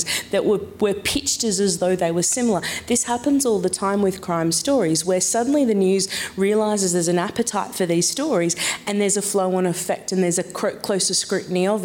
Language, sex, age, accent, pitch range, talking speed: English, female, 30-49, Australian, 175-210 Hz, 210 wpm